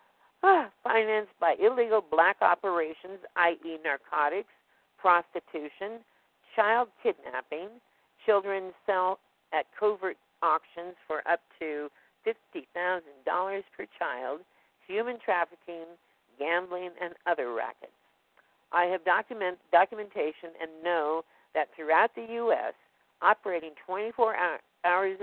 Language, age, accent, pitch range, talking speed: English, 50-69, American, 160-205 Hz, 95 wpm